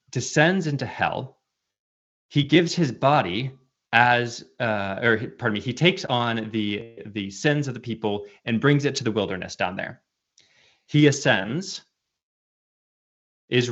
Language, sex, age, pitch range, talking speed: English, male, 20-39, 105-150 Hz, 140 wpm